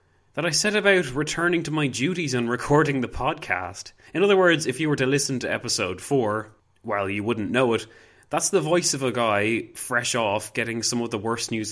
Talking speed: 215 wpm